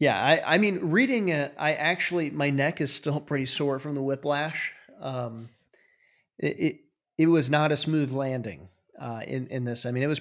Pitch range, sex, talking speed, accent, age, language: 130-165 Hz, male, 200 wpm, American, 40-59, English